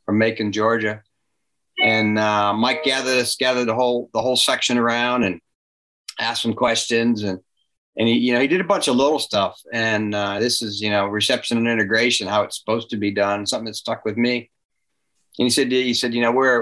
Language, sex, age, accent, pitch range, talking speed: English, male, 40-59, American, 105-120 Hz, 215 wpm